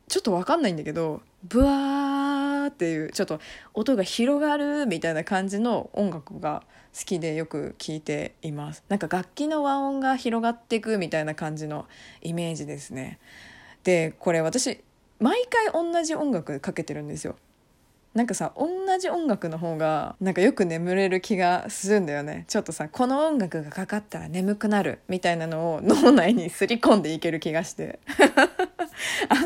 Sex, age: female, 20-39